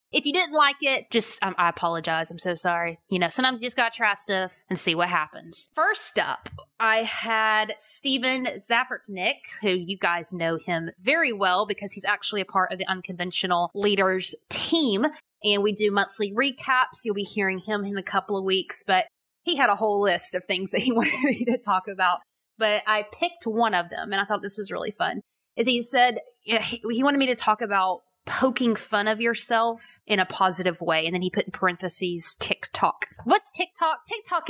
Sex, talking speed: female, 205 wpm